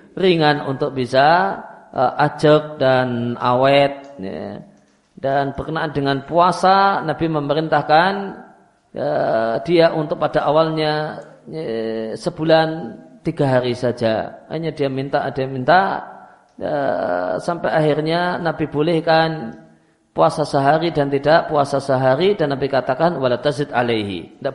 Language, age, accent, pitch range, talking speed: Indonesian, 40-59, native, 135-165 Hz, 115 wpm